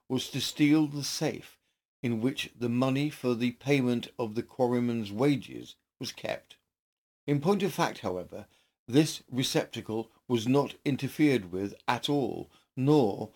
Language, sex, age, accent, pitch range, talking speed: English, male, 50-69, British, 110-145 Hz, 145 wpm